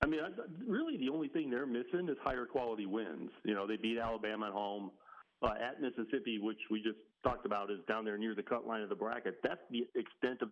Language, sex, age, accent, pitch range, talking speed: English, male, 40-59, American, 105-130 Hz, 235 wpm